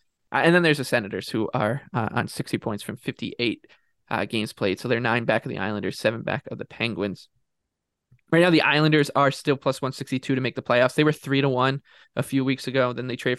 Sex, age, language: male, 20-39, English